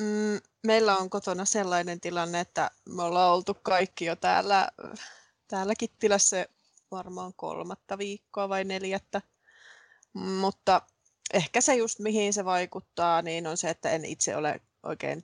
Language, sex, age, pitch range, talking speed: Finnish, female, 20-39, 170-205 Hz, 135 wpm